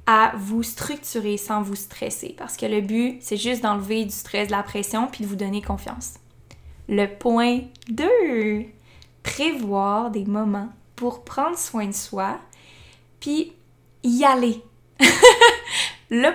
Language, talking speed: French, 140 wpm